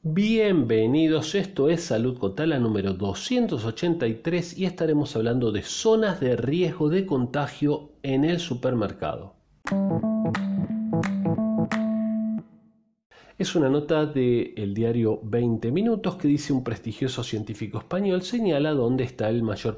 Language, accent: Spanish, Argentinian